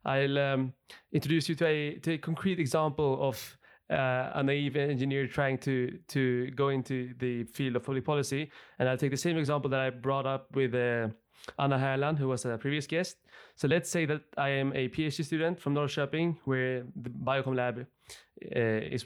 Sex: male